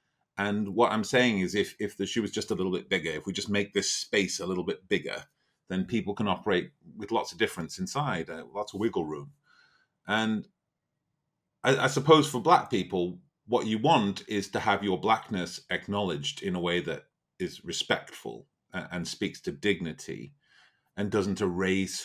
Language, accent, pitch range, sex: English, British, 85-115 Hz, male